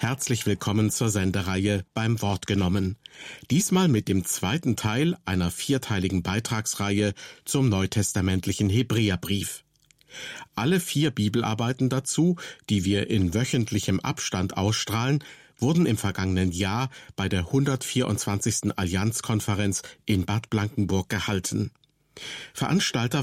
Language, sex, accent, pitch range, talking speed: German, male, German, 100-130 Hz, 105 wpm